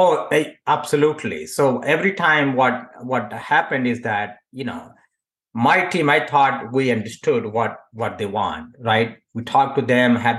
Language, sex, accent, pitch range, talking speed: English, male, Indian, 115-140 Hz, 160 wpm